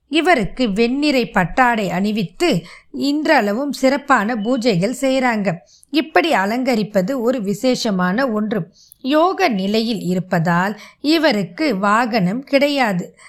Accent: native